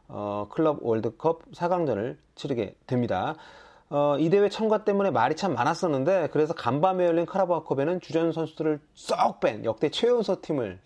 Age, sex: 30-49, male